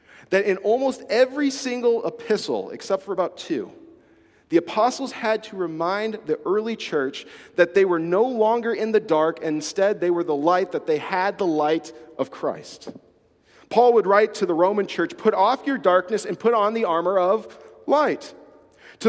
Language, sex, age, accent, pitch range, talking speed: English, male, 40-59, American, 180-235 Hz, 180 wpm